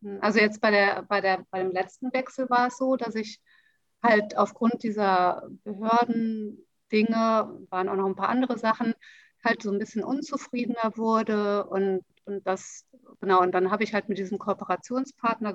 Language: German